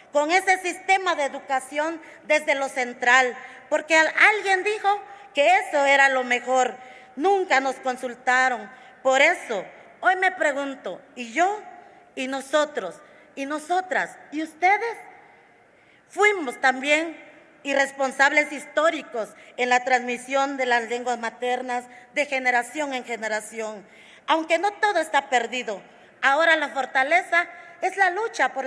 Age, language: 40-59, Spanish